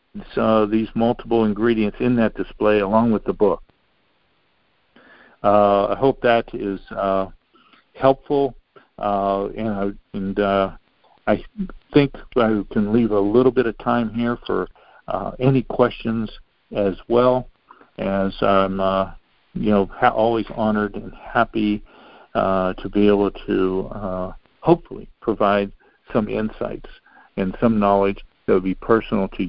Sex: male